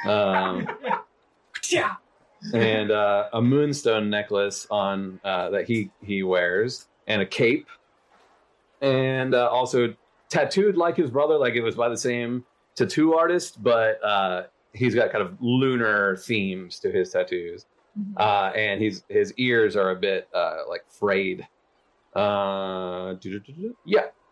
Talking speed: 135 wpm